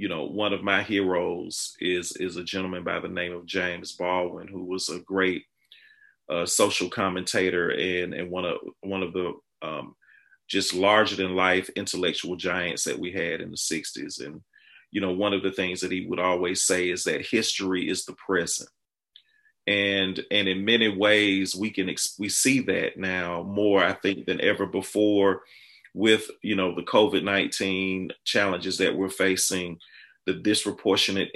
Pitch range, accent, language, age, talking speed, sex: 90-105 Hz, American, English, 30-49, 170 wpm, male